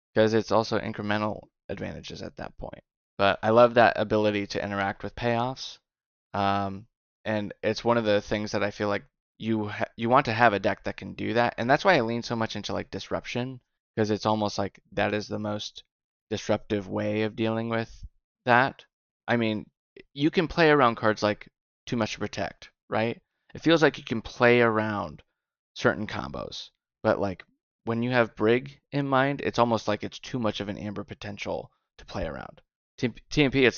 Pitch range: 105-115 Hz